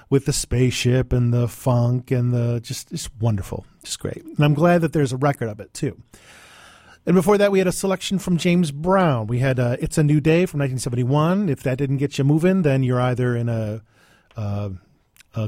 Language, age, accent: English, 40-59, American